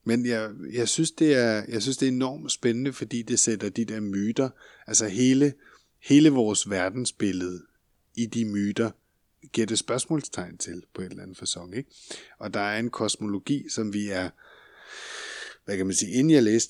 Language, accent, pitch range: Danish, native, 105-130 Hz